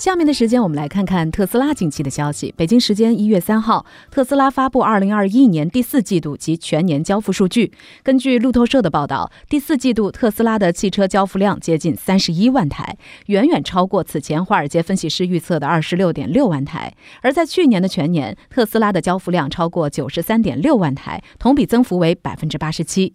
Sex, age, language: female, 30-49, Chinese